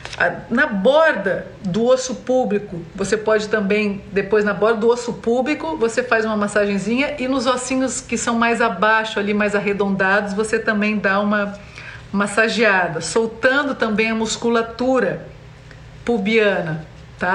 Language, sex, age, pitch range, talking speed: Portuguese, female, 50-69, 200-240 Hz, 135 wpm